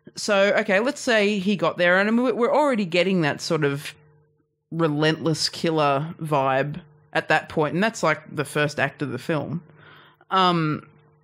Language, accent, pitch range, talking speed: English, Australian, 150-175 Hz, 160 wpm